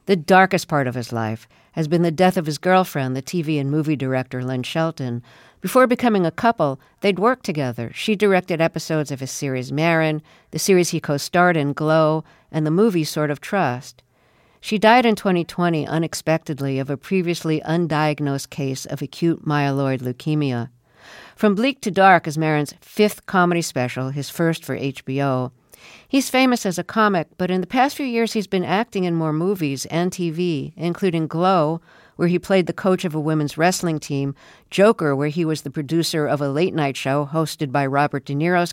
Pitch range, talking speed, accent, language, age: 145-180 Hz, 185 wpm, American, English, 50-69